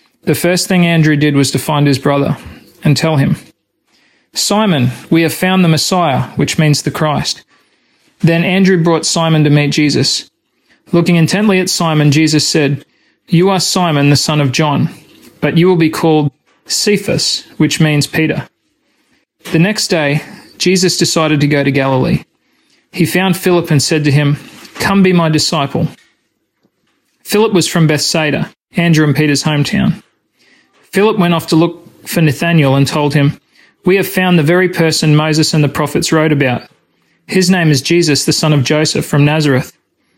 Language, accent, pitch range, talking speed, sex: English, Australian, 150-185 Hz, 165 wpm, male